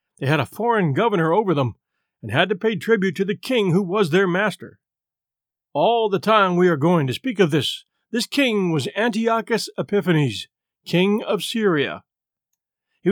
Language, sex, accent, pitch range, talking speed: English, male, American, 160-215 Hz, 175 wpm